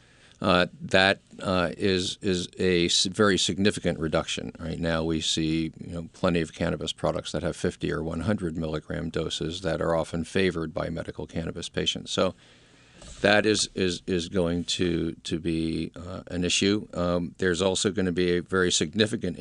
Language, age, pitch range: English, 50-69, 80-95 Hz